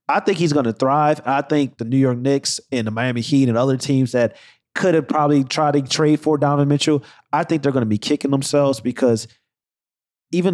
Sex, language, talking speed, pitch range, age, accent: male, English, 220 wpm, 125-175 Hz, 30-49, American